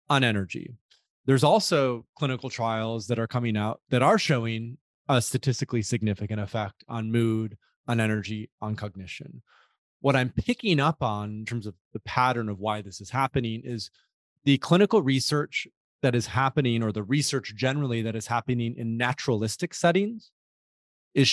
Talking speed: 160 wpm